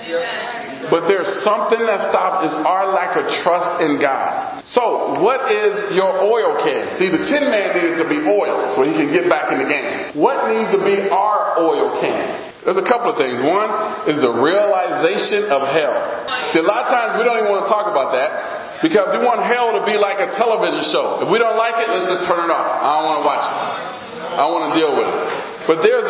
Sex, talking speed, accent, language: male, 230 wpm, American, English